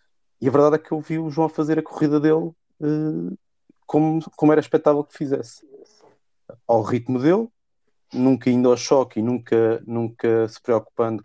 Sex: male